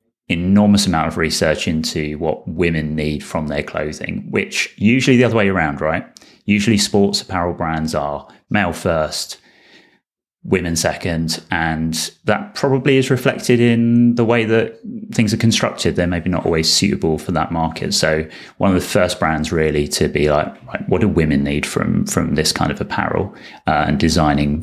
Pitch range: 80-120 Hz